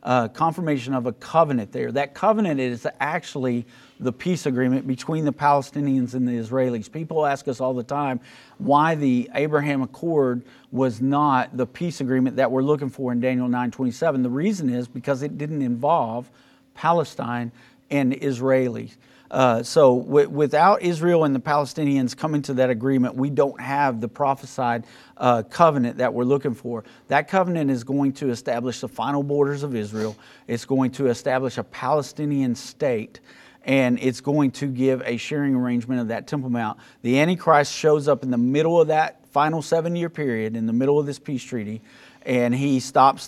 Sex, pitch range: male, 125-145 Hz